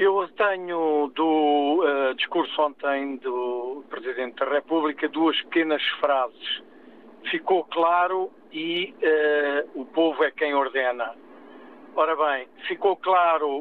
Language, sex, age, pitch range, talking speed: Portuguese, male, 50-69, 145-180 Hz, 115 wpm